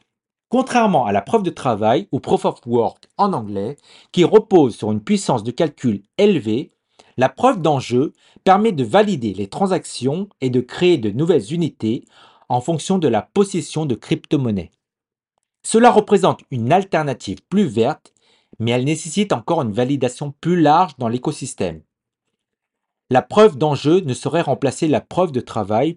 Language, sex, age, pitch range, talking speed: French, male, 40-59, 120-175 Hz, 155 wpm